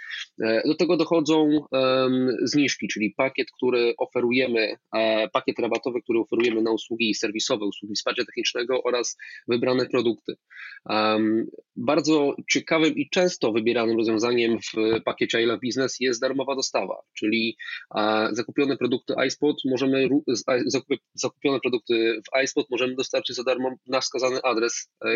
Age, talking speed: 20-39, 135 wpm